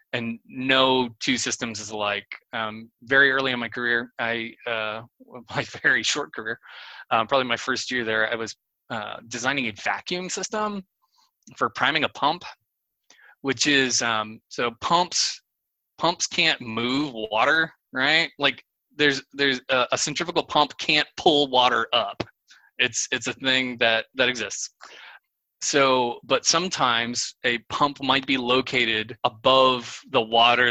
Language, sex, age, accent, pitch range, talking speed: English, male, 20-39, American, 115-135 Hz, 145 wpm